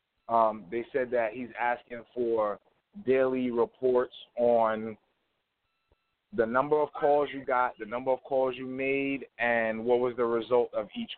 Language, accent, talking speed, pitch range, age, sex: English, American, 155 wpm, 115-135 Hz, 30-49, male